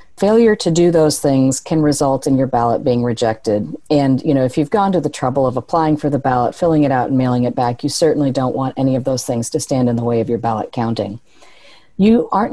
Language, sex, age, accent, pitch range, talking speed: English, female, 40-59, American, 125-150 Hz, 250 wpm